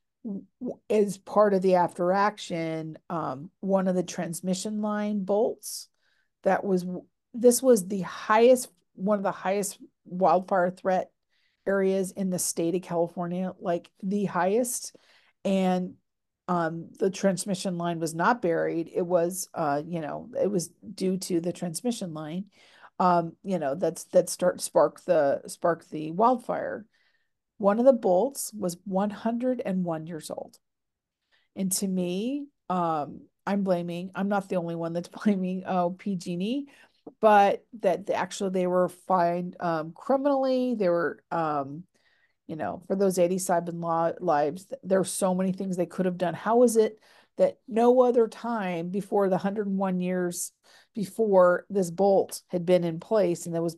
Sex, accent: female, American